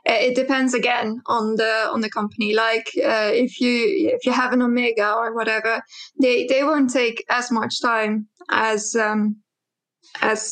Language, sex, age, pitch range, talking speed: English, female, 20-39, 225-260 Hz, 165 wpm